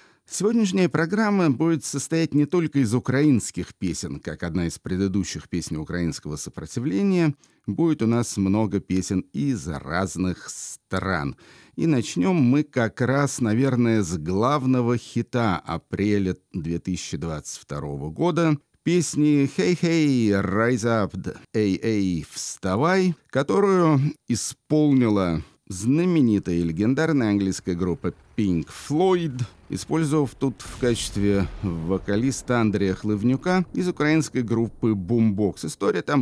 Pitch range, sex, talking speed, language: 90-135 Hz, male, 110 wpm, Russian